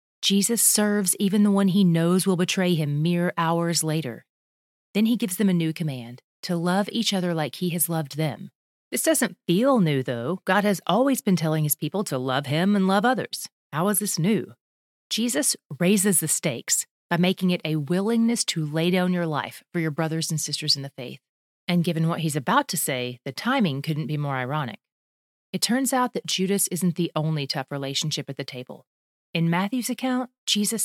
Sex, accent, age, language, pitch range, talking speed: female, American, 30-49, English, 155-205 Hz, 200 wpm